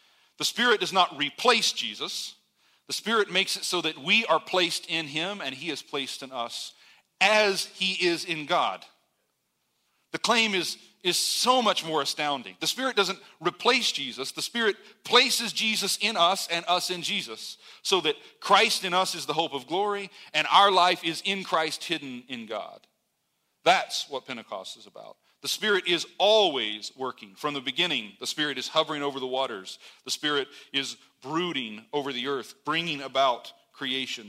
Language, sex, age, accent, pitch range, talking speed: English, male, 40-59, American, 140-190 Hz, 175 wpm